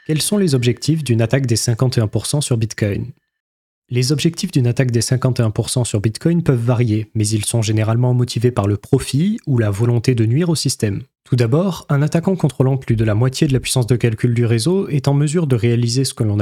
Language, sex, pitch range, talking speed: French, male, 115-150 Hz, 215 wpm